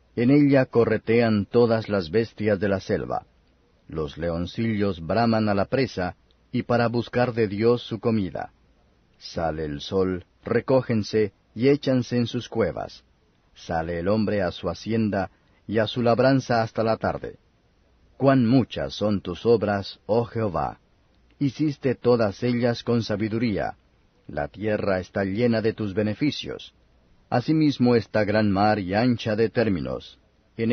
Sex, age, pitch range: male, 40-59, 95-120 Hz